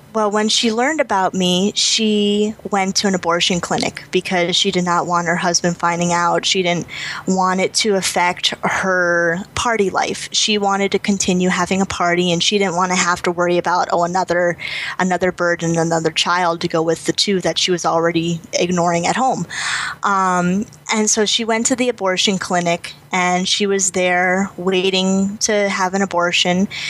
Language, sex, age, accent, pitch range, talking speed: English, female, 10-29, American, 175-195 Hz, 185 wpm